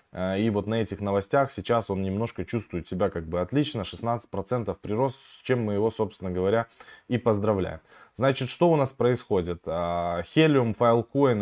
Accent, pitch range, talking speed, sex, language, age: native, 100-130 Hz, 165 wpm, male, Russian, 20-39